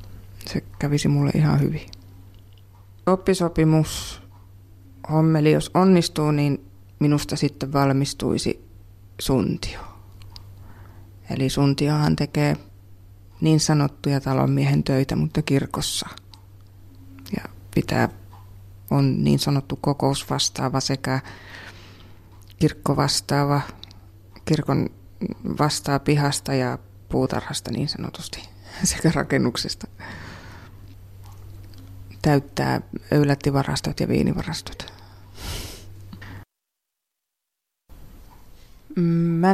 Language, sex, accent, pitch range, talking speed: Finnish, female, native, 95-145 Hz, 70 wpm